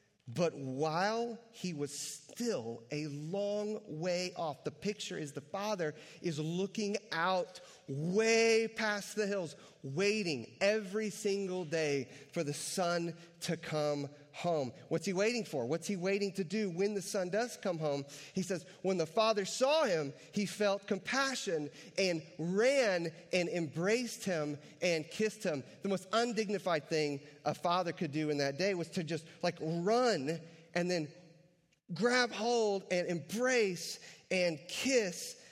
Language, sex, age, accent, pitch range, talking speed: English, male, 30-49, American, 150-210 Hz, 150 wpm